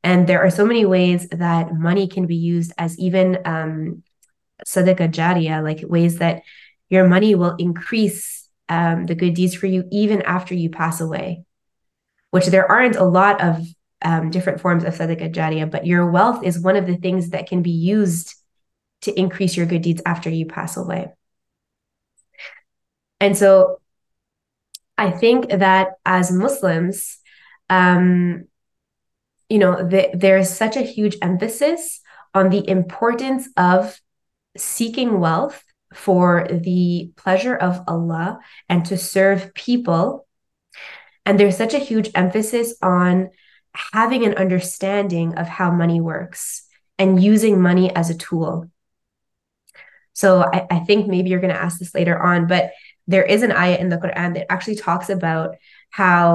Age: 20-39